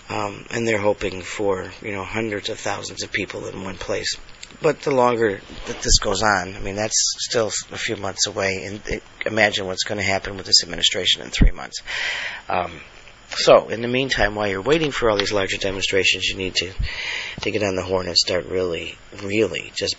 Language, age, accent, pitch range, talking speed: English, 40-59, American, 100-155 Hz, 205 wpm